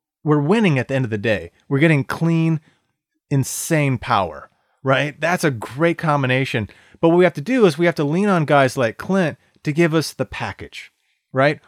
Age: 30-49